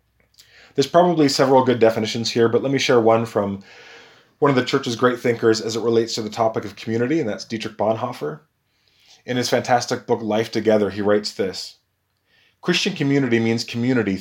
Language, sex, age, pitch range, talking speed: English, male, 30-49, 105-135 Hz, 180 wpm